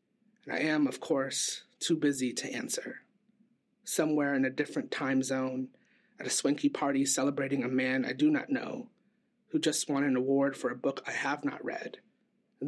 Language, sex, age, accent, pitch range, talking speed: English, male, 30-49, American, 140-225 Hz, 180 wpm